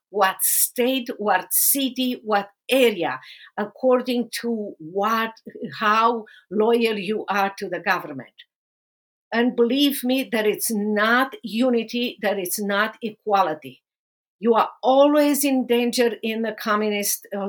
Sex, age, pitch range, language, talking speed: female, 50-69, 210-250 Hz, English, 125 wpm